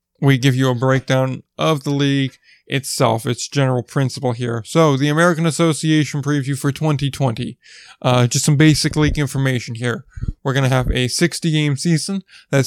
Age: 20-39